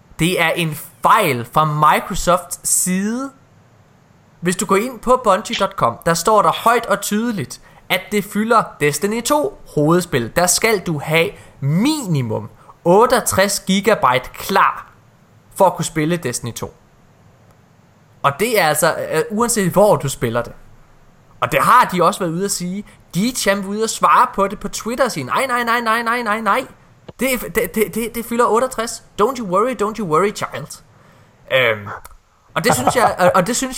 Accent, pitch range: native, 155-220 Hz